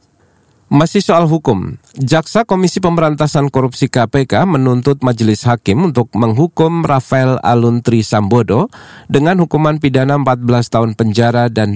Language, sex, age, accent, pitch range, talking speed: Indonesian, male, 40-59, native, 105-135 Hz, 115 wpm